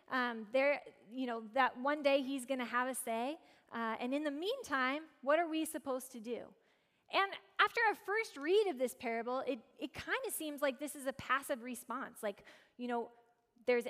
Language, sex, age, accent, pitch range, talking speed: English, female, 10-29, American, 230-300 Hz, 205 wpm